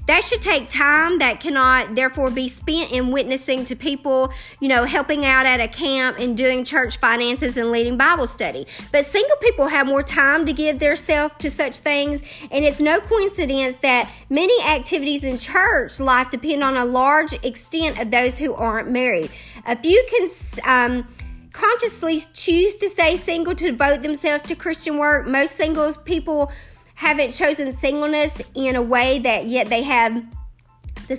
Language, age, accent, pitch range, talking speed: English, 50-69, American, 250-310 Hz, 175 wpm